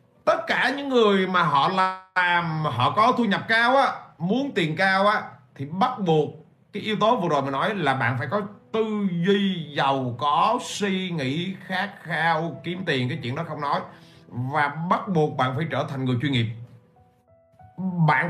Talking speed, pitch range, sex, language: 185 wpm, 145-195 Hz, male, Vietnamese